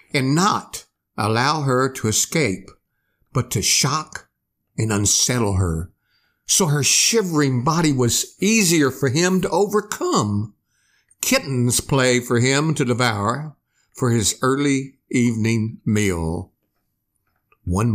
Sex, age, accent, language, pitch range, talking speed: male, 60-79, American, English, 105-165 Hz, 115 wpm